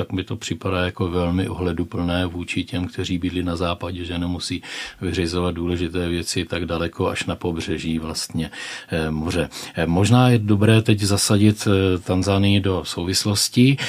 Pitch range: 90-100 Hz